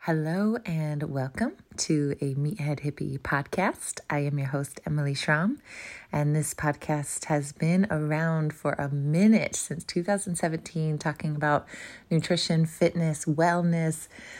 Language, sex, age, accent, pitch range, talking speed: English, female, 30-49, American, 150-175 Hz, 125 wpm